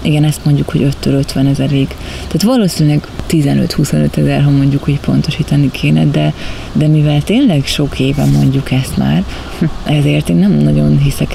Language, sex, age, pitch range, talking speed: Hungarian, female, 30-49, 135-155 Hz, 160 wpm